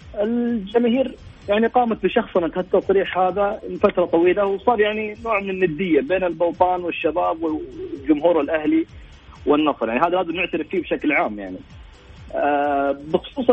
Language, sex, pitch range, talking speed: English, male, 135-195 Hz, 125 wpm